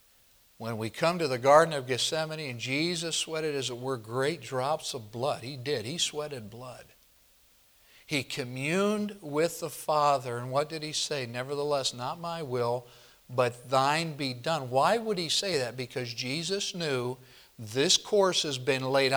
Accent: American